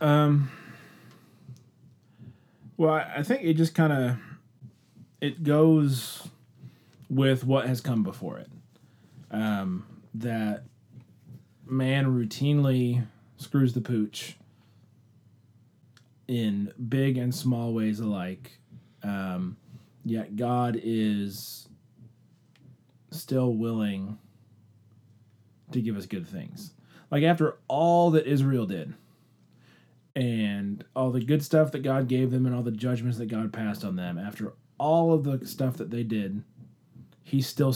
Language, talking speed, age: English, 120 wpm, 30-49